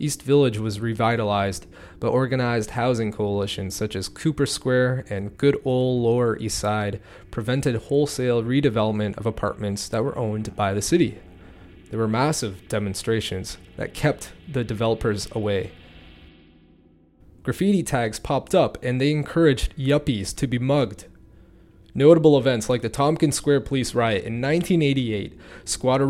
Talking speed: 140 wpm